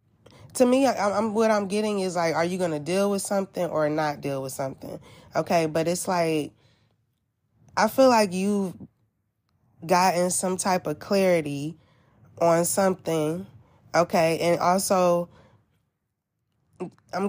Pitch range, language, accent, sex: 150-195 Hz, English, American, female